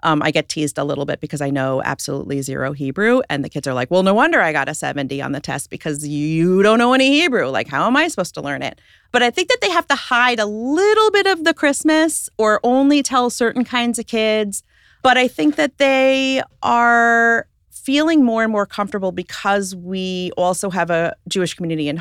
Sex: female